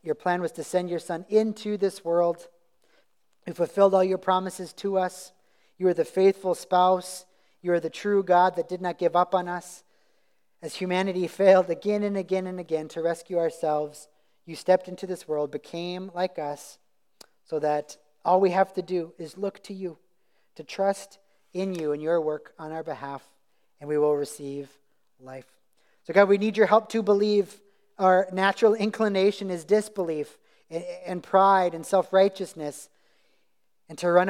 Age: 40-59